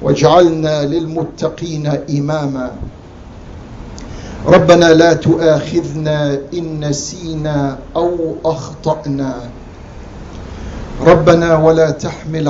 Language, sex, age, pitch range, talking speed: English, male, 50-69, 135-160 Hz, 60 wpm